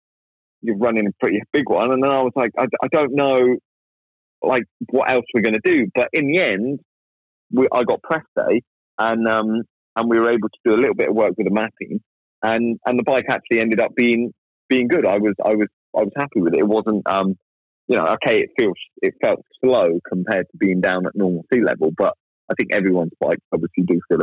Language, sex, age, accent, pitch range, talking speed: English, male, 30-49, British, 95-130 Hz, 230 wpm